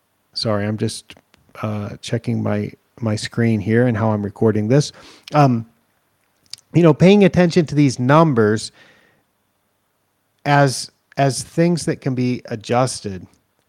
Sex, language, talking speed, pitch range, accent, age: male, English, 125 wpm, 110-130 Hz, American, 30-49